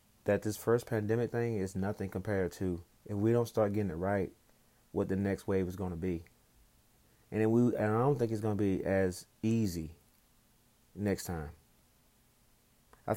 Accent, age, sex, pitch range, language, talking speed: American, 30-49, male, 95-115 Hz, English, 180 wpm